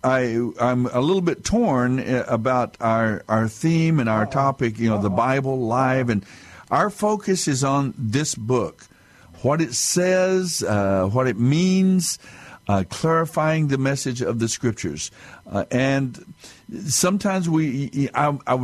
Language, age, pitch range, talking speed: English, 60-79, 120-150 Hz, 140 wpm